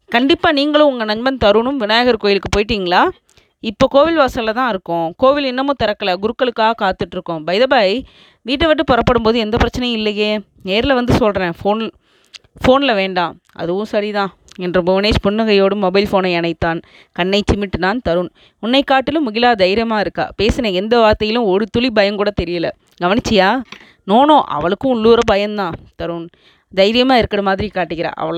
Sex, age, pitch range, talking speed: female, 20-39, 185-235 Hz, 140 wpm